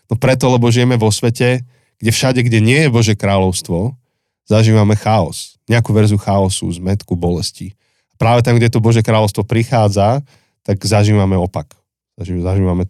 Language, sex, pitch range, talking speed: Slovak, male, 105-130 Hz, 150 wpm